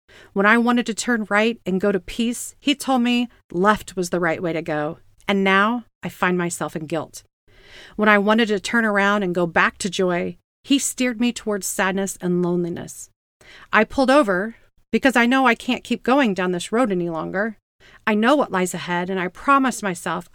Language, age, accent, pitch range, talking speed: English, 40-59, American, 180-225 Hz, 205 wpm